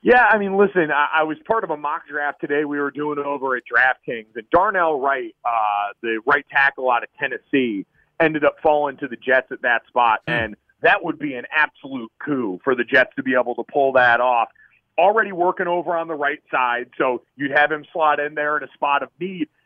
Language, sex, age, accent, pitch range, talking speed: English, male, 40-59, American, 145-190 Hz, 225 wpm